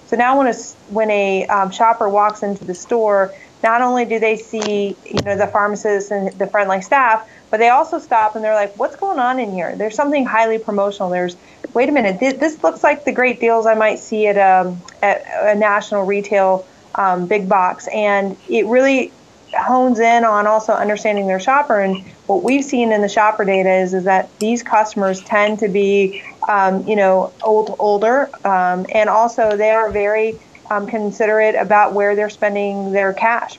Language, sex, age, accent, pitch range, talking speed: English, female, 30-49, American, 195-220 Hz, 195 wpm